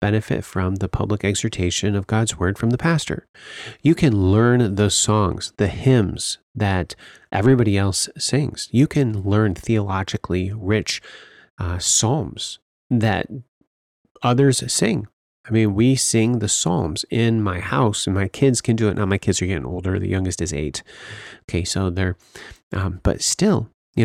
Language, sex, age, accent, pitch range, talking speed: English, male, 30-49, American, 100-130 Hz, 160 wpm